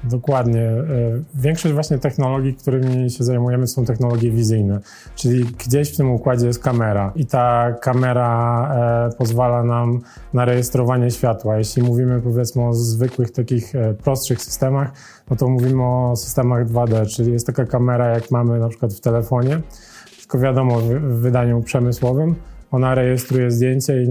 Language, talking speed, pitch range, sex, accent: Polish, 145 wpm, 120-135 Hz, male, native